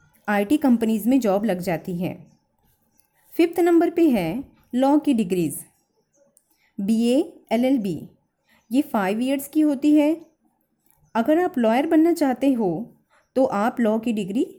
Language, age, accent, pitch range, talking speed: Hindi, 20-39, native, 210-285 Hz, 135 wpm